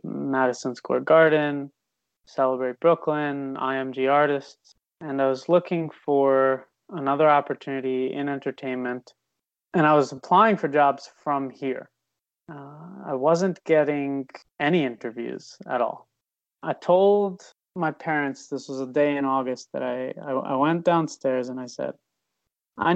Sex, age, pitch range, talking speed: male, 20-39, 135-155 Hz, 135 wpm